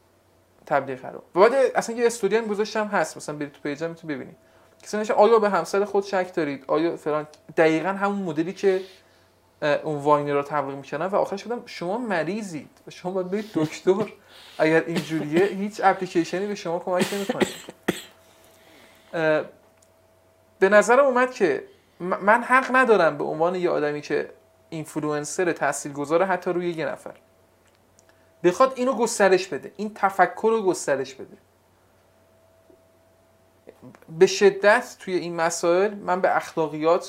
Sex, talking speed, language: male, 140 wpm, Persian